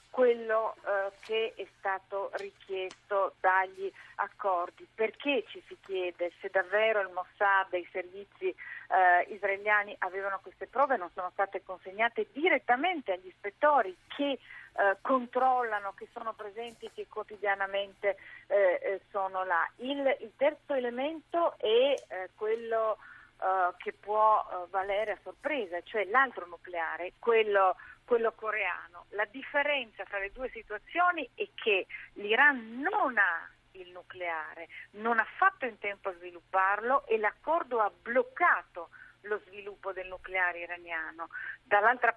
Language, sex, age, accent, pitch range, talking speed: Italian, female, 40-59, native, 195-270 Hz, 130 wpm